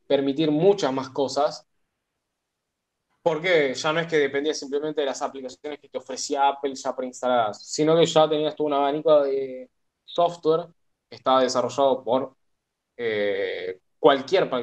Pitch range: 130-185 Hz